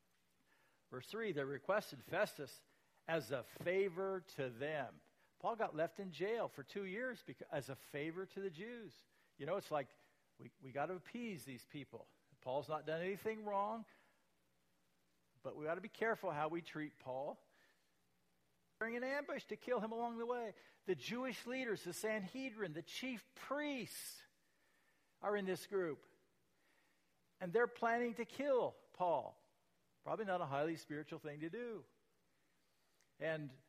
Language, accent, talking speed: English, American, 155 wpm